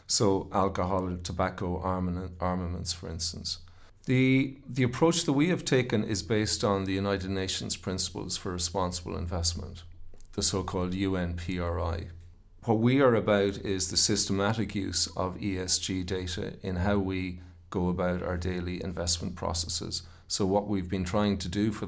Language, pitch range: English, 90-100 Hz